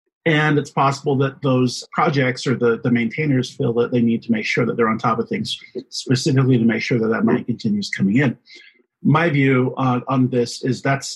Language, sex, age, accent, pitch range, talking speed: English, male, 40-59, American, 120-145 Hz, 215 wpm